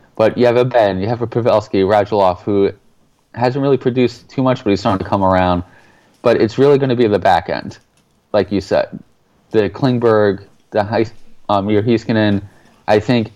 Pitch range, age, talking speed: 95-110 Hz, 20-39, 185 wpm